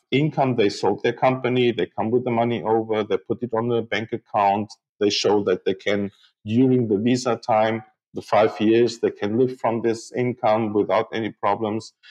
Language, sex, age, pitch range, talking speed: English, male, 50-69, 105-125 Hz, 195 wpm